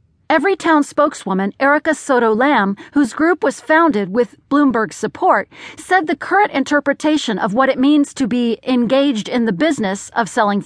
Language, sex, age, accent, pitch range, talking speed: English, female, 40-59, American, 220-310 Hz, 150 wpm